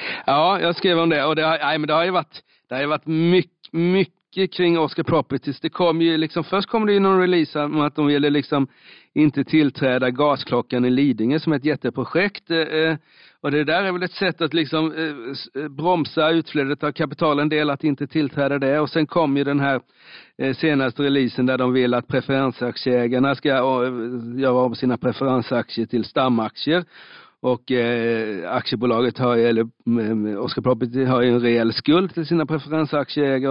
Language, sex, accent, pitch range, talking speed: Swedish, male, native, 120-150 Hz, 175 wpm